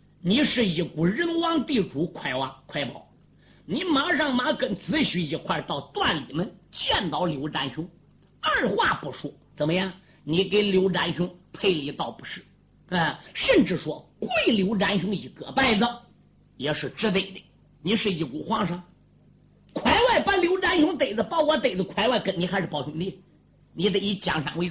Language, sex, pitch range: Chinese, male, 165-230 Hz